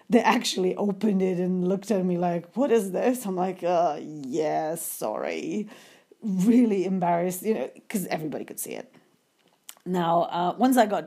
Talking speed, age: 165 wpm, 30-49